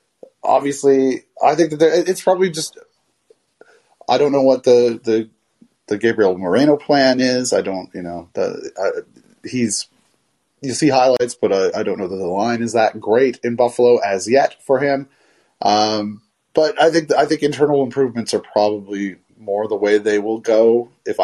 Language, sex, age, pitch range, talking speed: English, male, 30-49, 110-160 Hz, 170 wpm